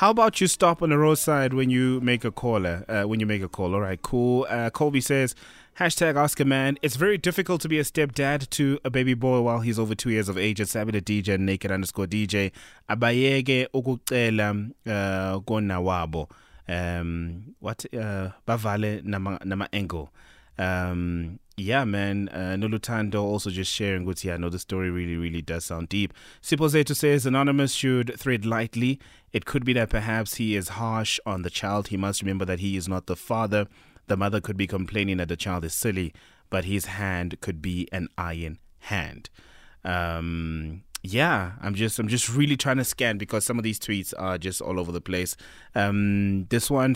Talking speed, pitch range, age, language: 190 wpm, 95-125 Hz, 20-39, English